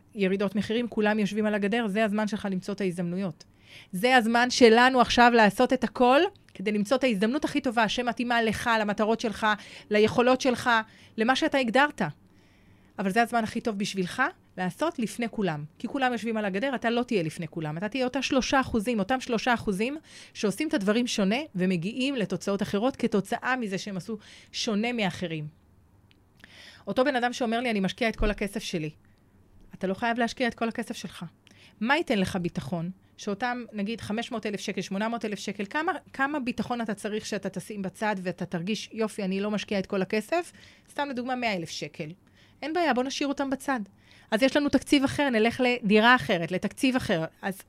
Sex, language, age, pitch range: female, Hebrew, 30-49, 195-245 Hz